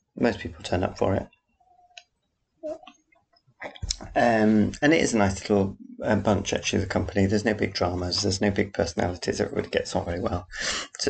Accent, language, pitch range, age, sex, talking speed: British, English, 95-110 Hz, 30-49, male, 175 wpm